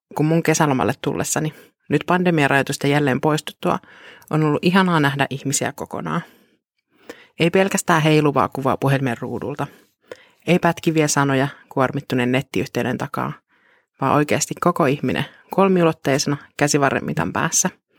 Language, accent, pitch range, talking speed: Finnish, native, 140-175 Hz, 115 wpm